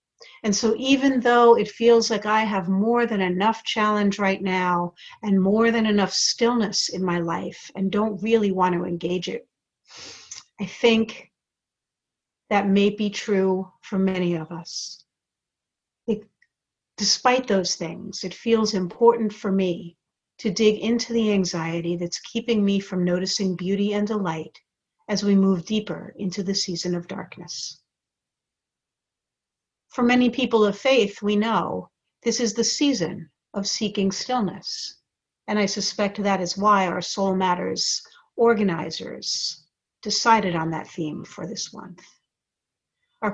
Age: 50-69